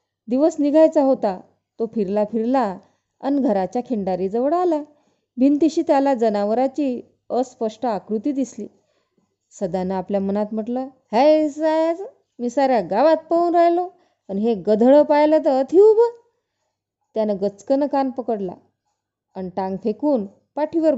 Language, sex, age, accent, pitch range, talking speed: Marathi, female, 20-39, native, 210-305 Hz, 115 wpm